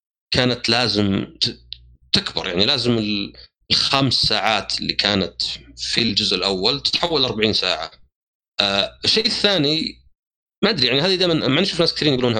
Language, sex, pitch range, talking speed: Arabic, male, 105-155 Hz, 135 wpm